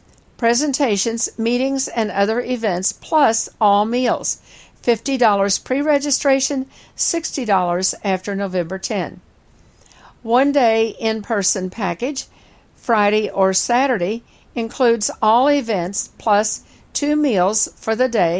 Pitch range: 195-260 Hz